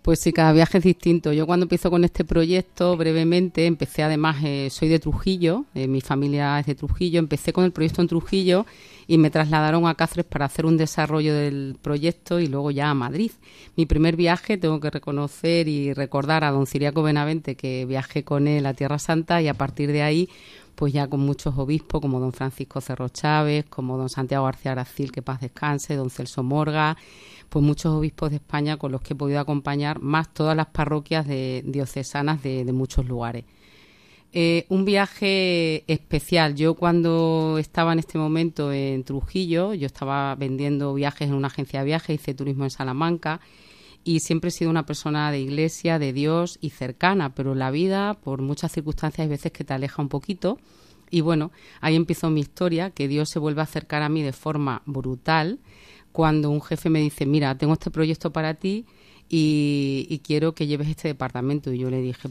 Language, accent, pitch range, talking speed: Spanish, Spanish, 140-165 Hz, 195 wpm